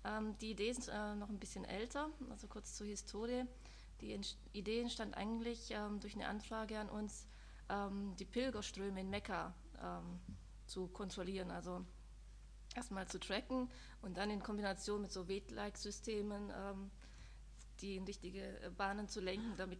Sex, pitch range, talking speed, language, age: female, 190-225 Hz, 155 wpm, German, 20-39